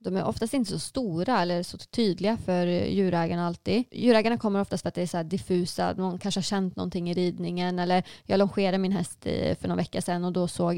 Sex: female